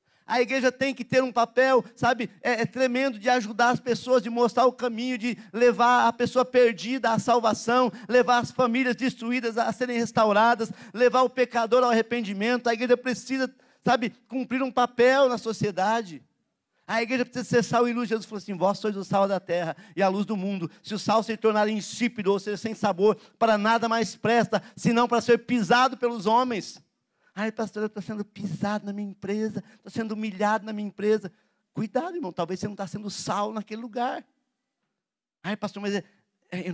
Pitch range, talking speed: 200-240 Hz, 190 wpm